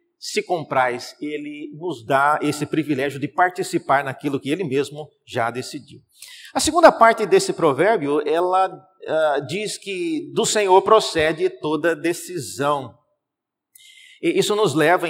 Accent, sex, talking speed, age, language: Brazilian, male, 130 wpm, 50-69, Portuguese